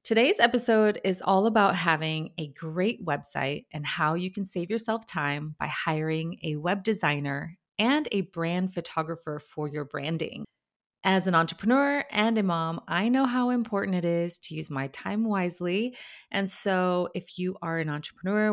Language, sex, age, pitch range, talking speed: English, female, 30-49, 155-200 Hz, 170 wpm